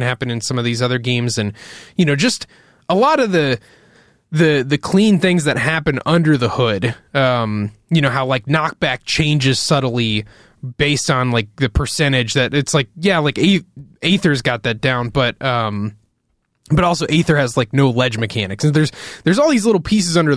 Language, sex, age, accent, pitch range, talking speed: English, male, 20-39, American, 120-155 Hz, 190 wpm